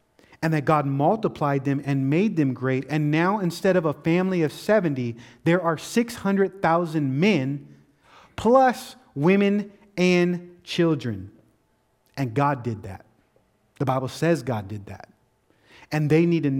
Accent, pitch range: American, 135-180 Hz